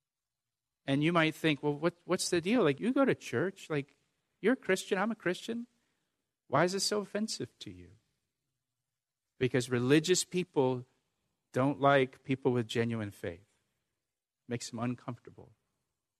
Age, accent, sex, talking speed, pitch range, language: 50-69, American, male, 145 wpm, 130-185 Hz, English